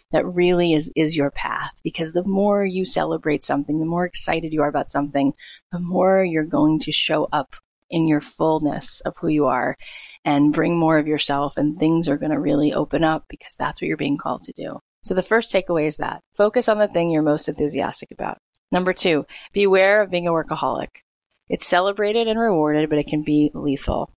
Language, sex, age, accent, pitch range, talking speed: English, female, 30-49, American, 150-185 Hz, 210 wpm